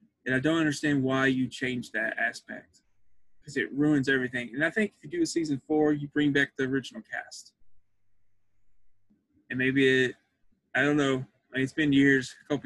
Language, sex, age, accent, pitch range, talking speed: English, male, 20-39, American, 130-165 Hz, 195 wpm